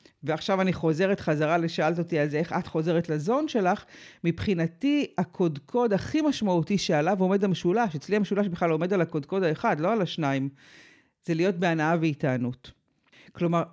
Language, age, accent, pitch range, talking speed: Hebrew, 50-69, native, 160-210 Hz, 150 wpm